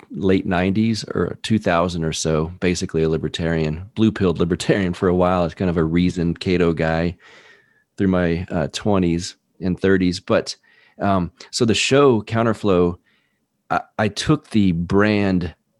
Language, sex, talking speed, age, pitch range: English, male, 145 wpm, 40-59, 85-100 Hz